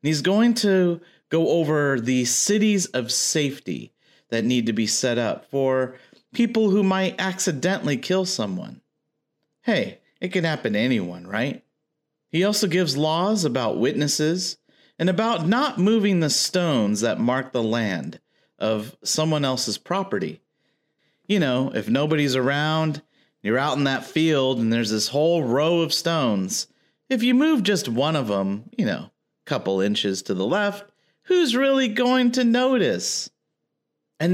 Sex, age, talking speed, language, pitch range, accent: male, 40-59, 150 wpm, English, 125-195 Hz, American